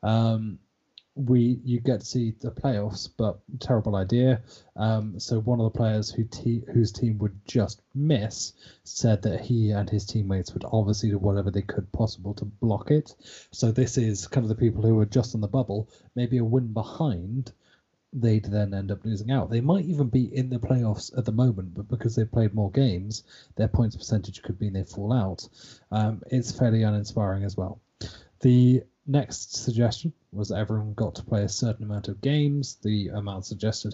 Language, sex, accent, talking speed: English, male, British, 195 wpm